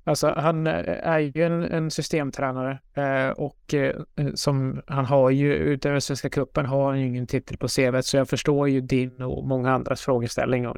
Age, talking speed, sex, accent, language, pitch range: 20-39, 185 wpm, male, native, Swedish, 125-145 Hz